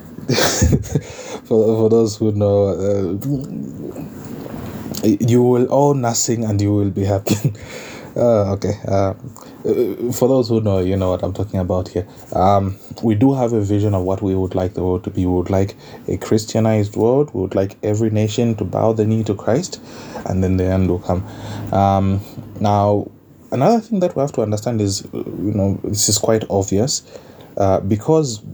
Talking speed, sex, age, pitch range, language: 180 wpm, male, 20-39, 95-115 Hz, English